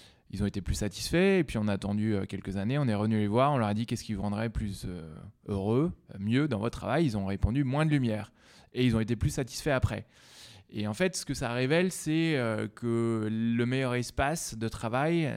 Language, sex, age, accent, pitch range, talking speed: French, male, 20-39, French, 110-140 Hz, 240 wpm